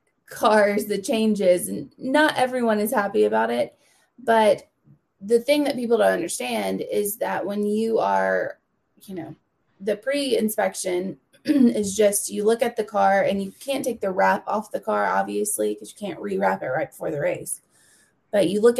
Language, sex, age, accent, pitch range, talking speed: English, female, 20-39, American, 185-220 Hz, 175 wpm